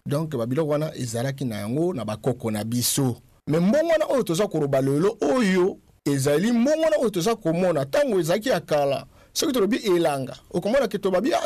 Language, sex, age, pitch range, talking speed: English, male, 50-69, 155-230 Hz, 185 wpm